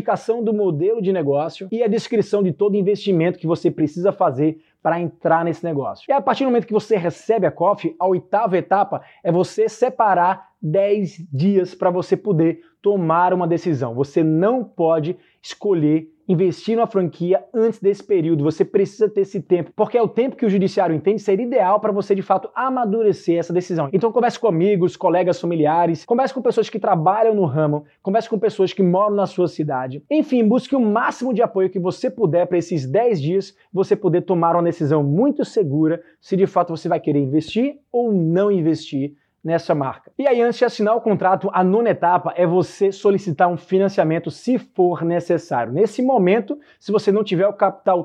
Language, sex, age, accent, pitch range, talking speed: Portuguese, male, 20-39, Brazilian, 170-215 Hz, 190 wpm